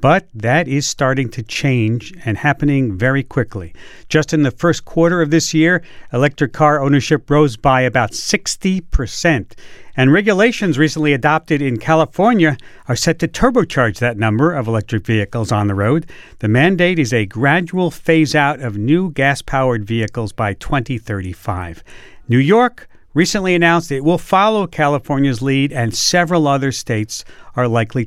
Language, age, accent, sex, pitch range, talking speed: English, 50-69, American, male, 130-190 Hz, 155 wpm